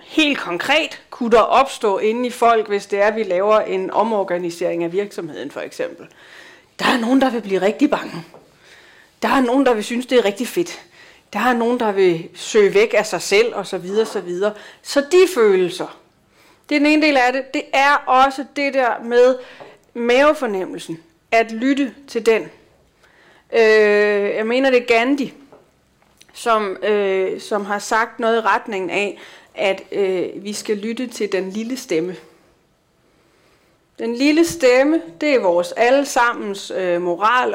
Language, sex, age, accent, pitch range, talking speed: Danish, female, 30-49, native, 190-255 Hz, 170 wpm